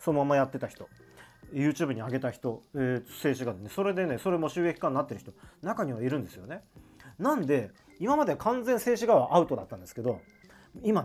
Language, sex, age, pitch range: Japanese, male, 40-59, 125-185 Hz